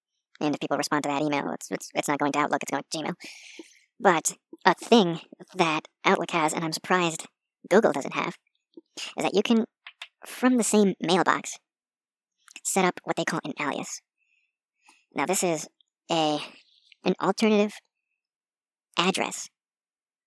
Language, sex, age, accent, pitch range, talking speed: English, male, 40-59, American, 150-190 Hz, 155 wpm